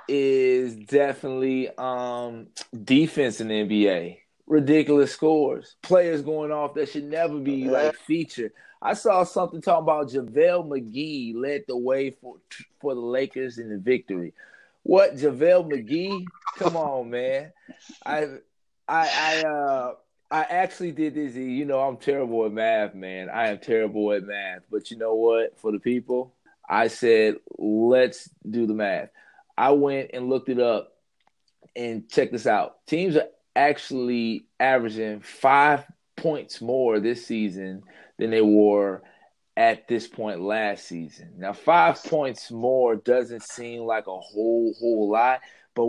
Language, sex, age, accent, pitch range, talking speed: English, male, 20-39, American, 115-150 Hz, 150 wpm